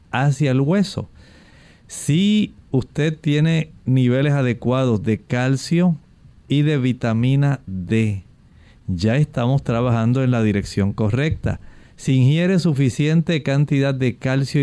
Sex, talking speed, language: male, 110 wpm, Spanish